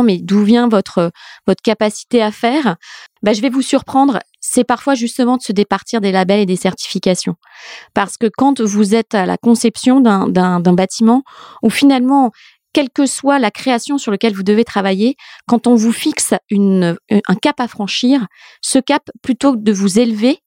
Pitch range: 195-245 Hz